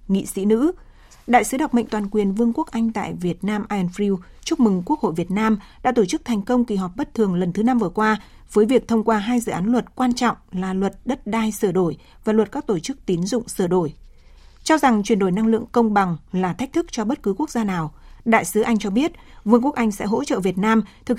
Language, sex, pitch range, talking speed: Vietnamese, female, 185-235 Hz, 265 wpm